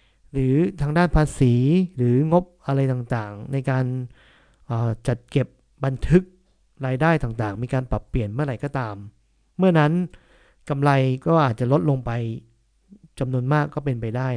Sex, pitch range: male, 120-155 Hz